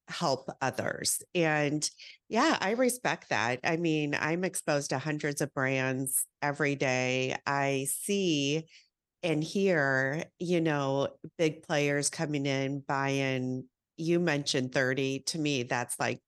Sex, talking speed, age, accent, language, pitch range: female, 130 wpm, 40-59, American, English, 135-175 Hz